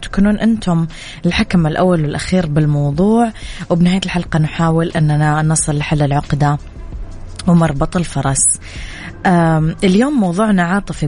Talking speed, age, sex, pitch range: 95 wpm, 20-39, female, 155-180 Hz